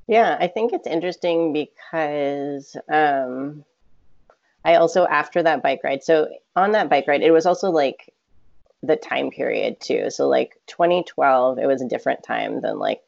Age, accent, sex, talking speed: 30-49, American, female, 165 wpm